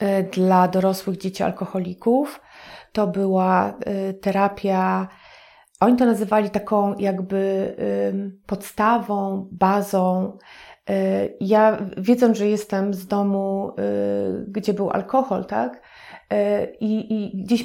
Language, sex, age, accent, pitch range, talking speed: Polish, female, 30-49, native, 185-220 Hz, 90 wpm